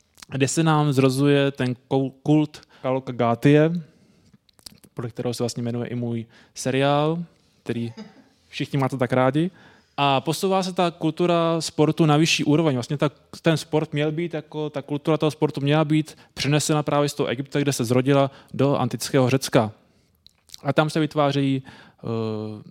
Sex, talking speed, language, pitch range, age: male, 155 wpm, Czech, 125-155 Hz, 20-39